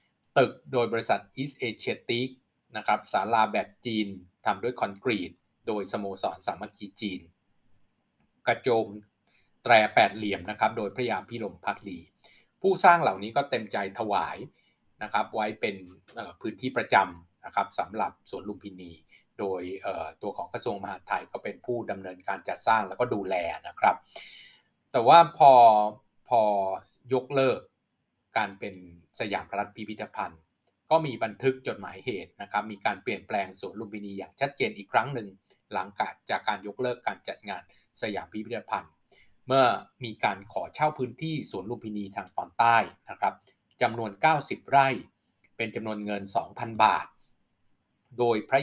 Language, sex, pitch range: Thai, male, 100-125 Hz